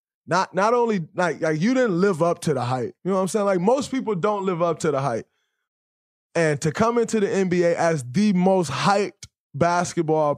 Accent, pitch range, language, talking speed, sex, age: American, 135-180 Hz, English, 215 wpm, male, 20-39